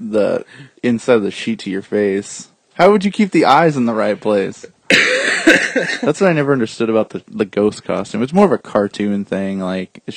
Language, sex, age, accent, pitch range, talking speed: English, male, 20-39, American, 100-140 Hz, 210 wpm